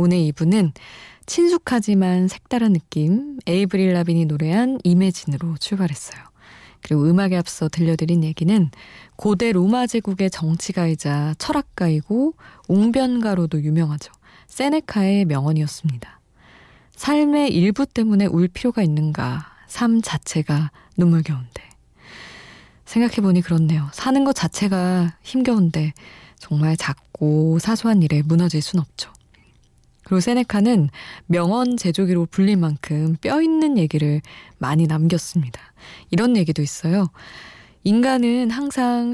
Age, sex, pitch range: 20-39, female, 155-215 Hz